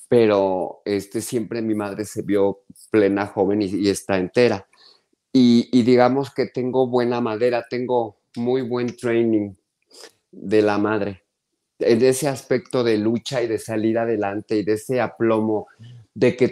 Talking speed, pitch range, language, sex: 155 wpm, 110-140 Hz, Spanish, male